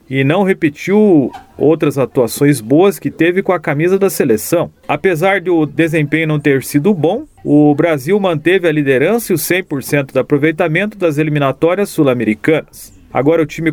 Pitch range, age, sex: 145-190 Hz, 40-59, male